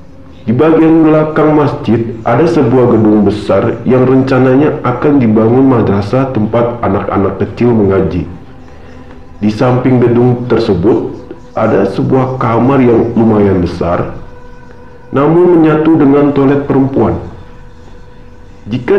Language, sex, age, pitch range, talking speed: Indonesian, male, 50-69, 100-135 Hz, 105 wpm